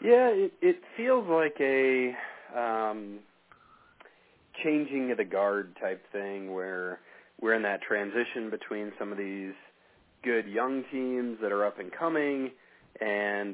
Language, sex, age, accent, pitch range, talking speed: English, male, 30-49, American, 95-115 Hz, 135 wpm